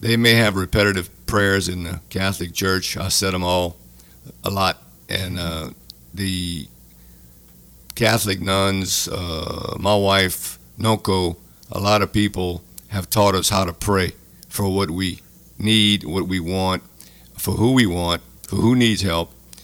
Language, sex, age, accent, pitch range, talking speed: English, male, 50-69, American, 85-100 Hz, 150 wpm